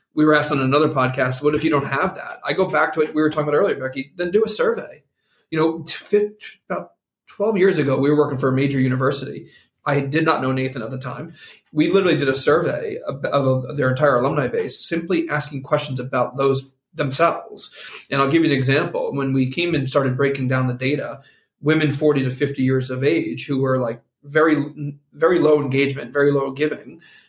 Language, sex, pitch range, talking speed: English, male, 135-160 Hz, 210 wpm